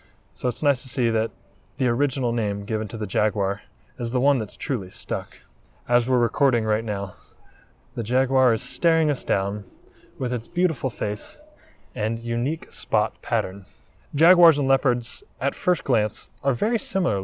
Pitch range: 105-135 Hz